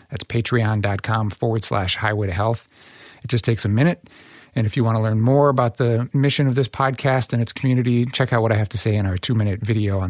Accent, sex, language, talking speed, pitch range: American, male, English, 240 wpm, 110-125 Hz